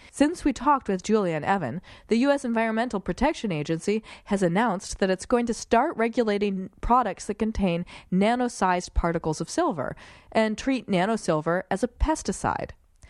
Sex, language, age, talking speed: female, English, 30-49, 150 wpm